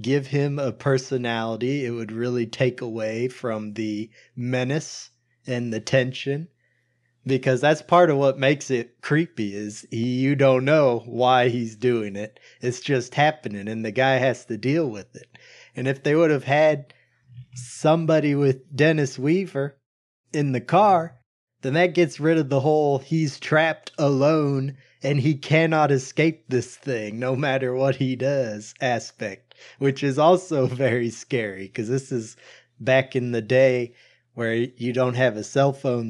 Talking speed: 160 wpm